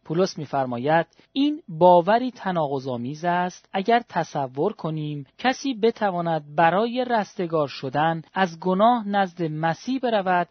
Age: 30-49